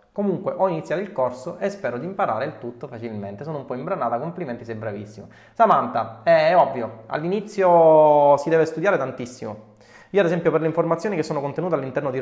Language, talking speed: Italian, 185 wpm